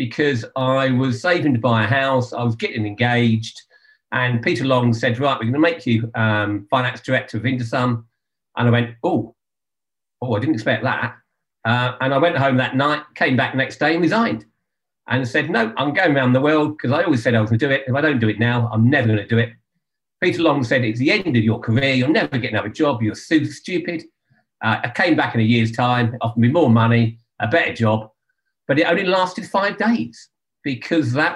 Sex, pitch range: male, 115-145 Hz